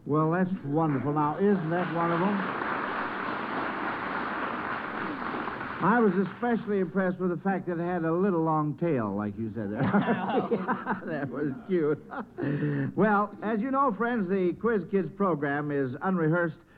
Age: 60-79